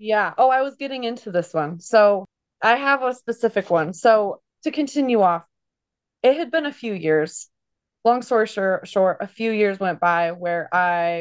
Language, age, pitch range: English, 20-39, 180-215 Hz